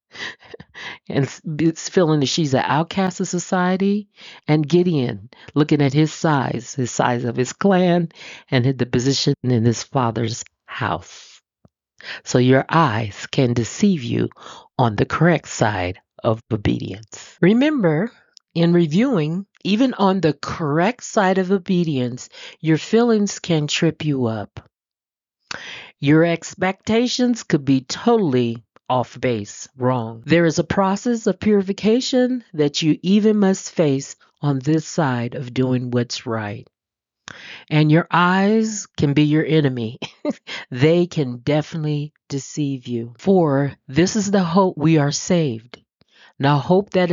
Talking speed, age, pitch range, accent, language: 135 wpm, 40-59, 130-185 Hz, American, English